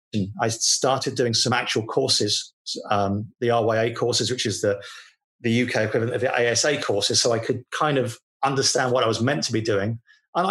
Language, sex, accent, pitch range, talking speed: English, male, British, 120-160 Hz, 195 wpm